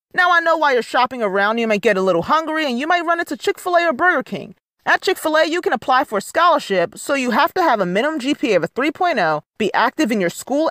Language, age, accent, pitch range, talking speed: English, 30-49, American, 200-320 Hz, 260 wpm